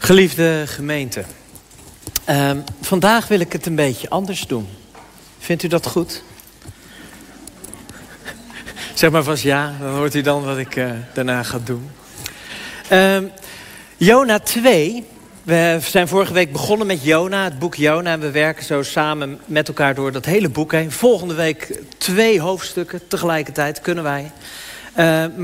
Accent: Dutch